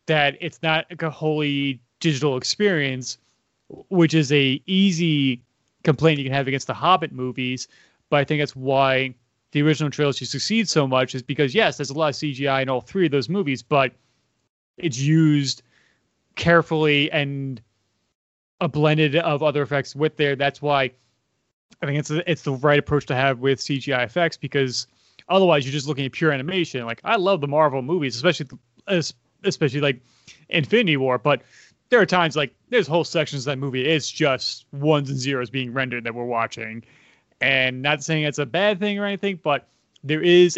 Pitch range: 130-155 Hz